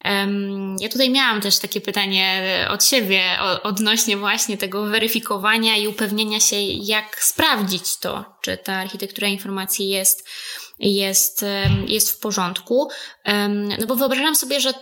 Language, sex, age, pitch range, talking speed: Polish, female, 20-39, 200-240 Hz, 130 wpm